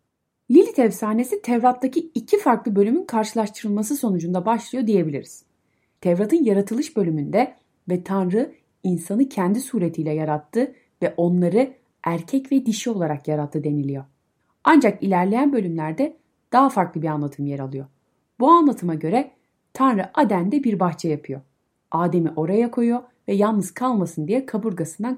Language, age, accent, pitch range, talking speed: Turkish, 30-49, native, 160-250 Hz, 125 wpm